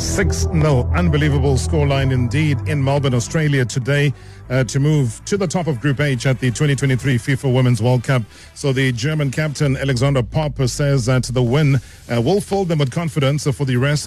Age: 40-59